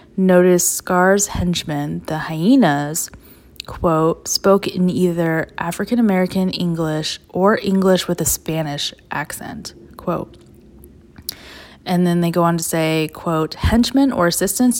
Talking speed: 120 wpm